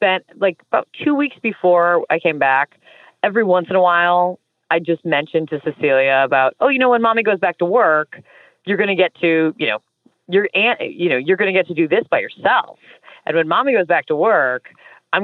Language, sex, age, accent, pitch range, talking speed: English, female, 30-49, American, 155-200 Hz, 225 wpm